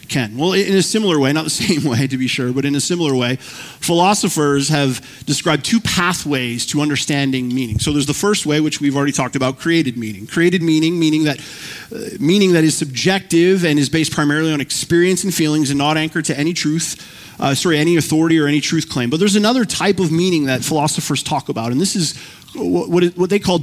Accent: American